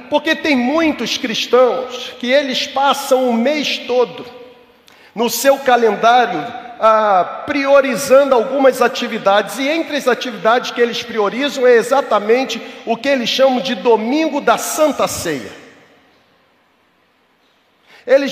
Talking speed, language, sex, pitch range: 120 wpm, Portuguese, male, 245-300 Hz